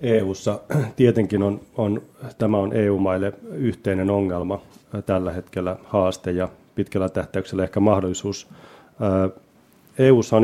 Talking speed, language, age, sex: 110 wpm, Finnish, 30-49, male